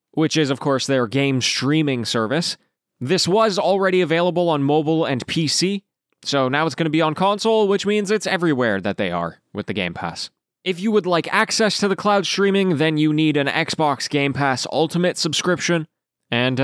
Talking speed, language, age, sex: 190 wpm, English, 20-39, male